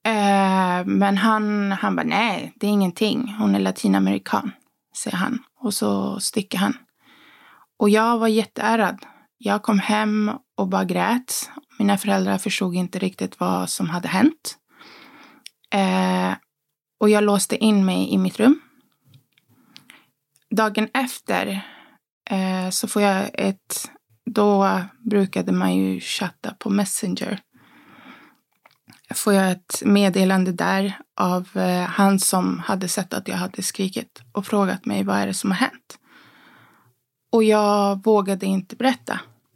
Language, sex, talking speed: Swedish, female, 130 wpm